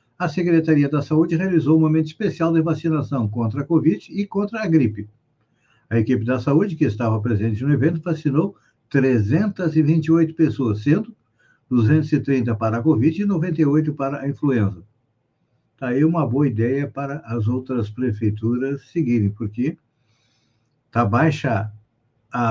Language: Portuguese